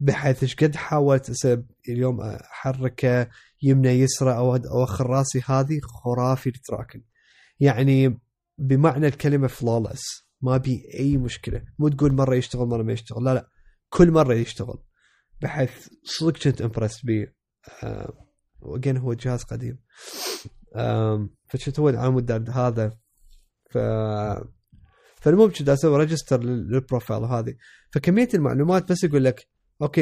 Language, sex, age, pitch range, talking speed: Arabic, male, 20-39, 120-140 Hz, 120 wpm